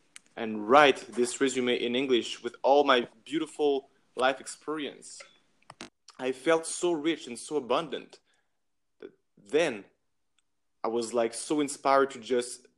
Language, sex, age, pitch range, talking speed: English, male, 20-39, 115-140 Hz, 130 wpm